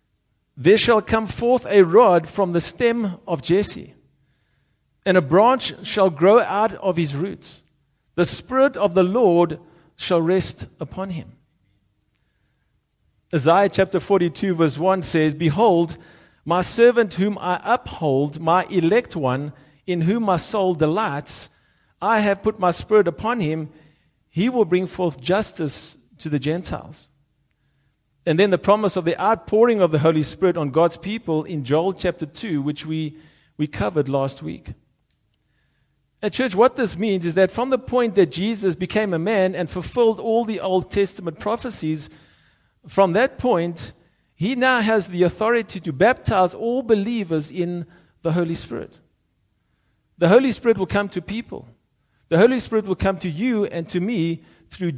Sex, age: male, 50-69